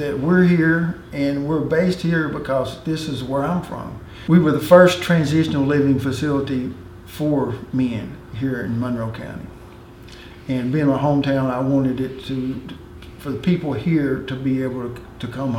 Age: 50-69